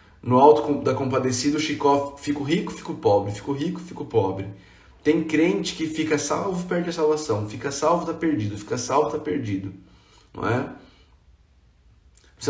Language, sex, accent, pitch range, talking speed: Portuguese, male, Brazilian, 120-185 Hz, 150 wpm